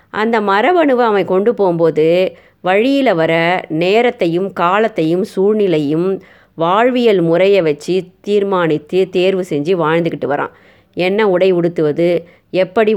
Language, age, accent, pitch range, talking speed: Tamil, 20-39, native, 170-210 Hz, 100 wpm